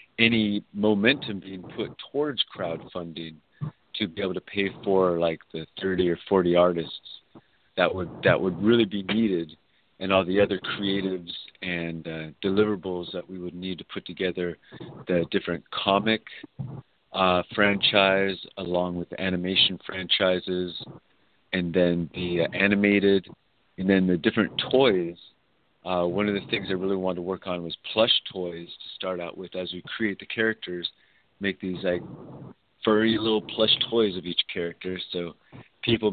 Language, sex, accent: English, male, American